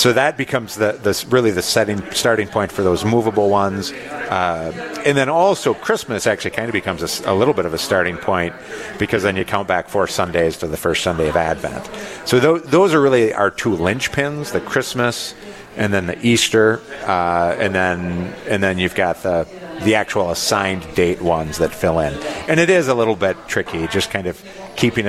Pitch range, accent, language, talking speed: 95-120 Hz, American, English, 205 wpm